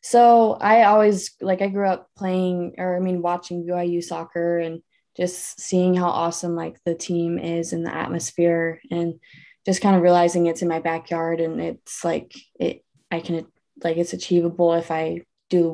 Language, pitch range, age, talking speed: English, 170-195 Hz, 20-39, 185 wpm